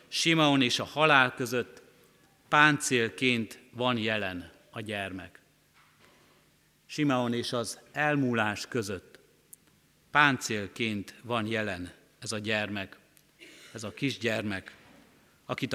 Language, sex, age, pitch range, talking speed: Hungarian, male, 50-69, 110-135 Hz, 95 wpm